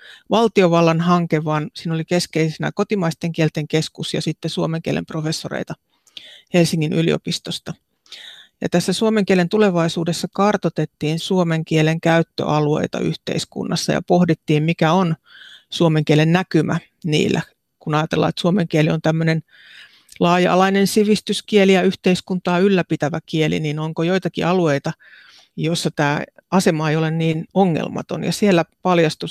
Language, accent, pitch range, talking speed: Finnish, native, 155-180 Hz, 125 wpm